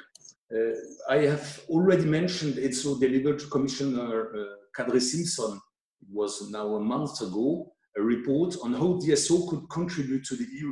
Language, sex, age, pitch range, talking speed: English, male, 50-69, 125-165 Hz, 160 wpm